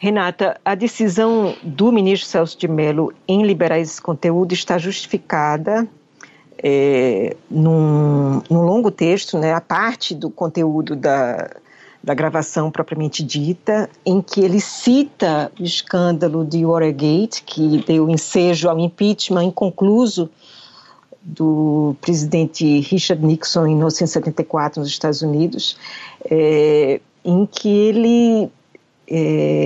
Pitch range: 160-220 Hz